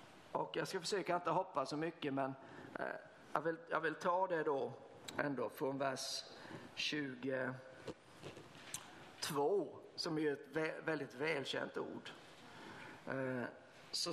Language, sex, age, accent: Swedish, male, 50-69, native